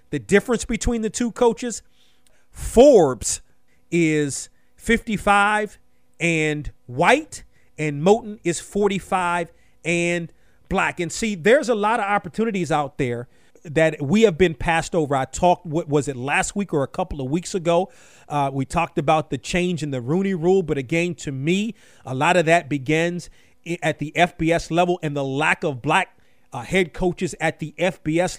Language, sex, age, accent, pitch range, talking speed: English, male, 40-59, American, 155-195 Hz, 165 wpm